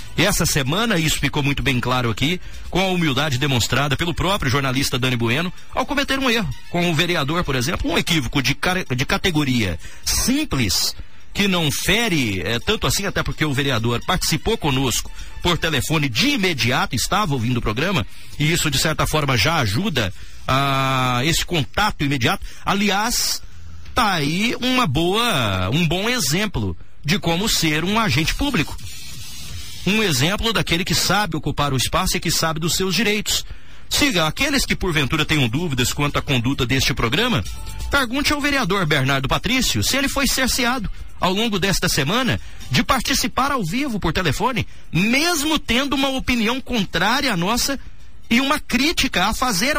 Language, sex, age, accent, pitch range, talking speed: Portuguese, male, 40-59, Brazilian, 140-215 Hz, 160 wpm